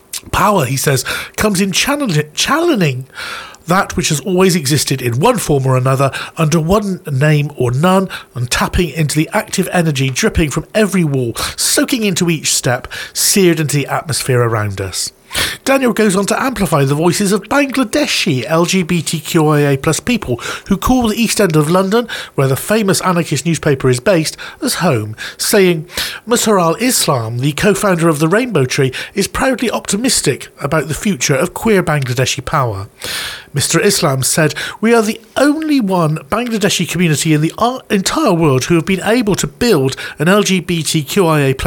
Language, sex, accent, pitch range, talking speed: English, male, British, 140-200 Hz, 160 wpm